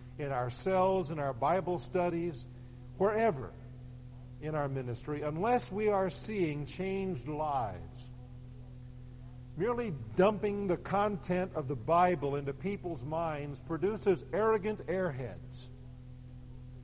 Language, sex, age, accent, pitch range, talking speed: English, male, 50-69, American, 125-180 Hz, 105 wpm